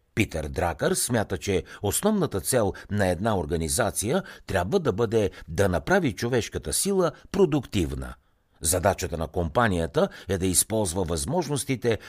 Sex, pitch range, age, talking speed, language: male, 85-125 Hz, 60-79, 120 wpm, Bulgarian